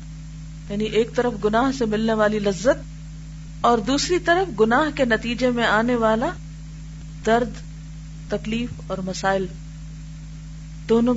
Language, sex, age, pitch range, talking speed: Urdu, female, 40-59, 155-230 Hz, 120 wpm